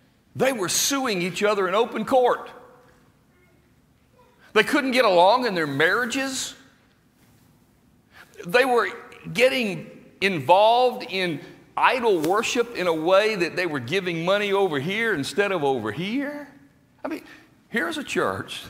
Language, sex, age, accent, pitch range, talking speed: English, male, 60-79, American, 125-205 Hz, 130 wpm